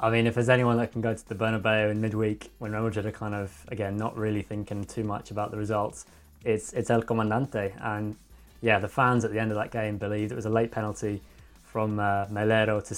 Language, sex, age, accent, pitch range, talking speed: English, male, 20-39, British, 105-120 Hz, 240 wpm